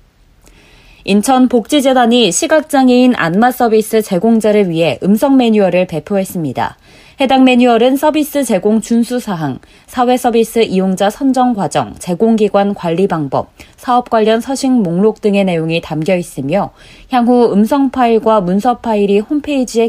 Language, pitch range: Korean, 185-240 Hz